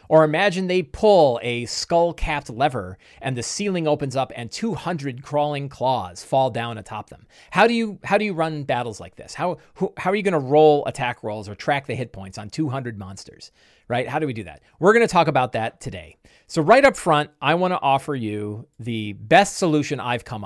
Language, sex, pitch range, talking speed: English, male, 110-155 Hz, 210 wpm